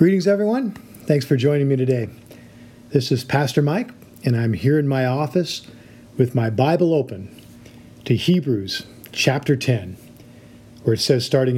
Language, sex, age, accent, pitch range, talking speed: English, male, 50-69, American, 120-150 Hz, 150 wpm